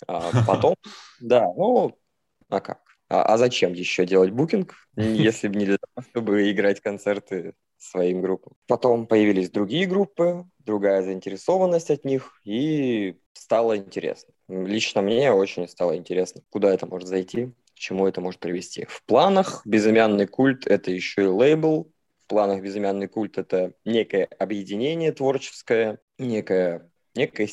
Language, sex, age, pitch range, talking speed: Russian, male, 20-39, 90-110 Hz, 140 wpm